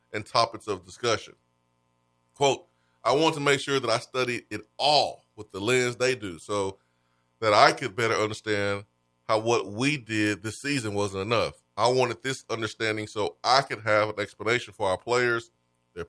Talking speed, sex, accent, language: 180 wpm, male, American, English